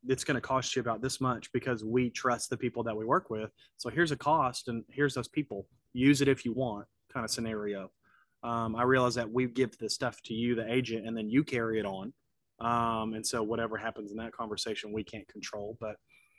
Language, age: English, 30-49